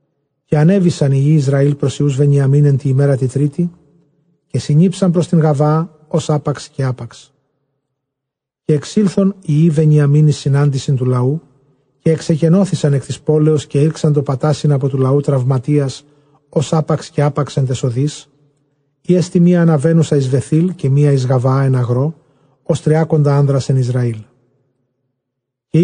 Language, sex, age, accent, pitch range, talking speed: English, male, 40-59, Greek, 135-155 Hz, 145 wpm